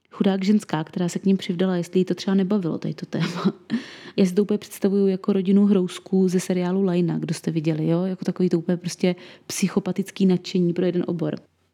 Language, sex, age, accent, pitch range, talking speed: Czech, female, 20-39, native, 175-200 Hz, 200 wpm